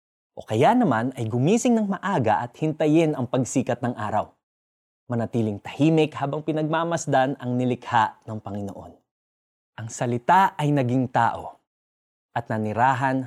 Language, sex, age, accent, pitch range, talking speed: Filipino, male, 20-39, native, 105-150 Hz, 125 wpm